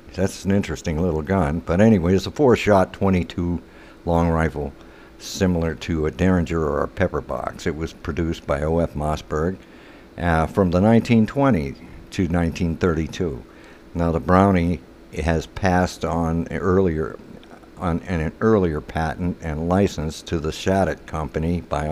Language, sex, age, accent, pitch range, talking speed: English, male, 60-79, American, 80-95 Hz, 145 wpm